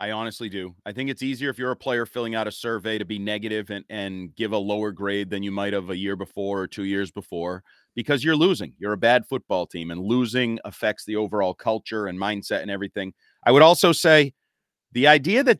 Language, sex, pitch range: English, male, 105-155 Hz